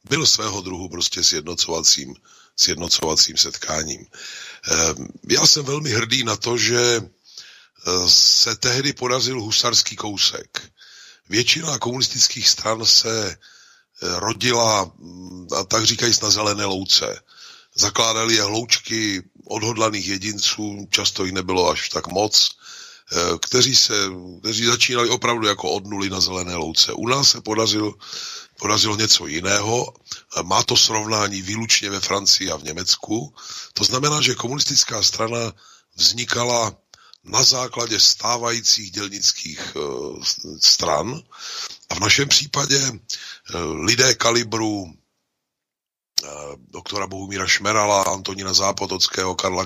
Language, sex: Slovak, male